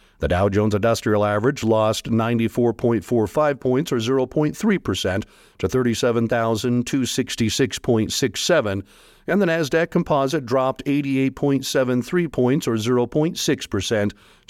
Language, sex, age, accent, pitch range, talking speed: English, male, 50-69, American, 110-135 Hz, 85 wpm